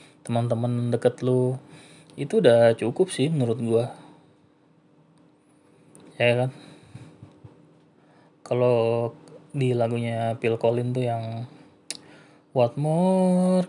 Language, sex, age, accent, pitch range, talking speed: Indonesian, male, 20-39, native, 115-150 Hz, 85 wpm